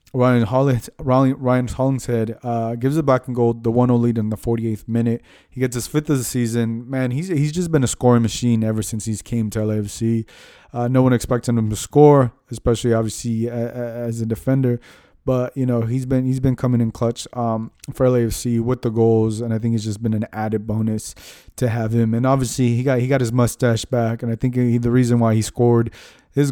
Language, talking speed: English, 220 wpm